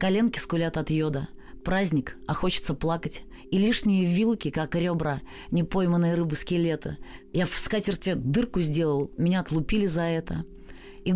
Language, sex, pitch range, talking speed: Russian, female, 160-195 Hz, 135 wpm